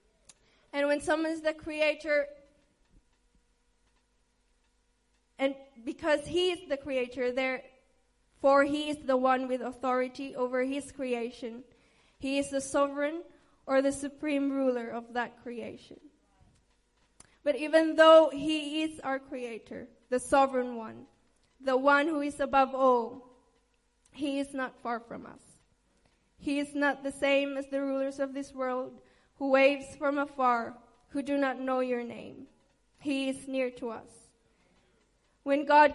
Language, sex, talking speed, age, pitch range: English, female, 140 wpm, 20-39, 250-285 Hz